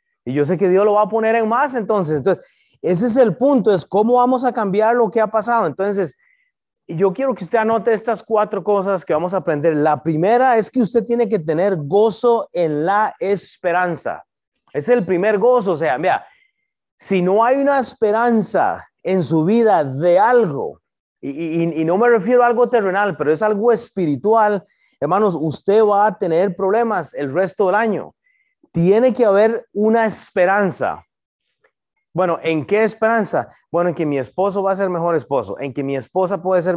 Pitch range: 180-235 Hz